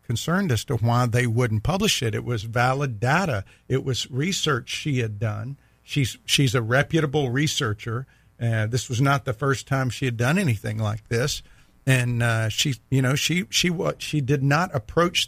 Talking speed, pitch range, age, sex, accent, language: 190 wpm, 115-145 Hz, 50-69, male, American, English